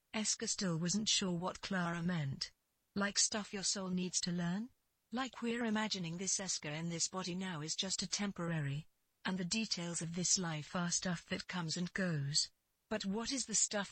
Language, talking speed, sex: English, 190 wpm, female